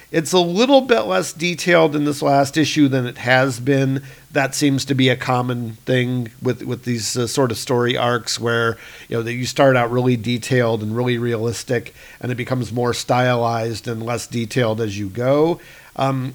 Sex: male